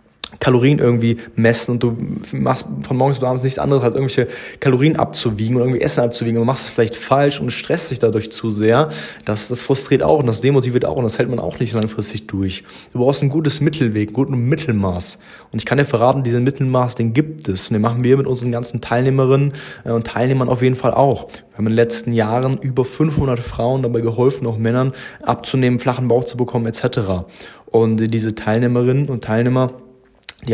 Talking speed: 210 wpm